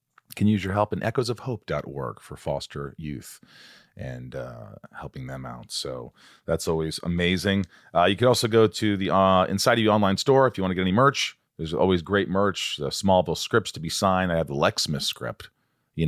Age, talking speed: 40-59, 215 wpm